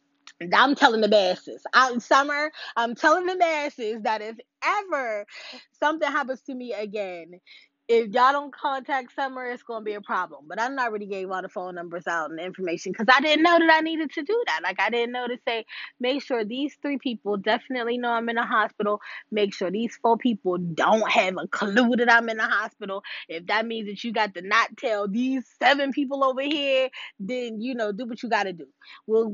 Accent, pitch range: American, 180-245 Hz